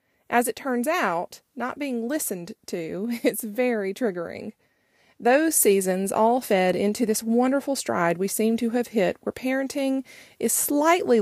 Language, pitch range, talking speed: English, 195-245 Hz, 150 wpm